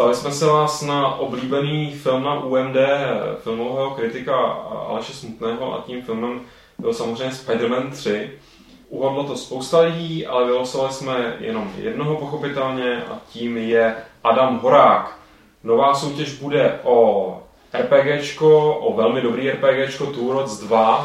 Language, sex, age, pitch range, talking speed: Czech, male, 20-39, 115-140 Hz, 135 wpm